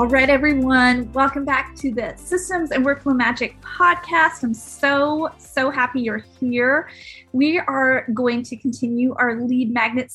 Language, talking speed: English, 155 wpm